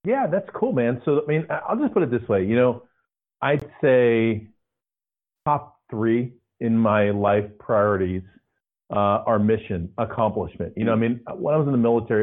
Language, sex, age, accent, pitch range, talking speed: English, male, 40-59, American, 105-130 Hz, 180 wpm